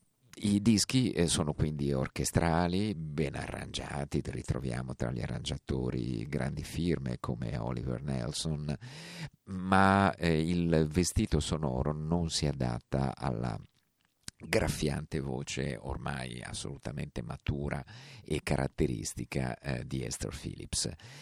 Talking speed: 95 wpm